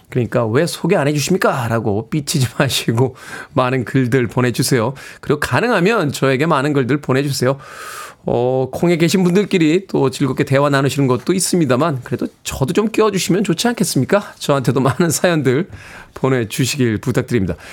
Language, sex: Korean, male